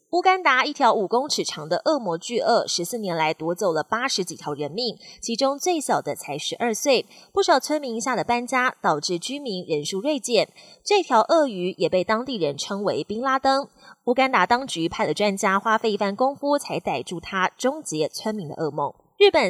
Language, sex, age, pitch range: Chinese, female, 20-39, 180-265 Hz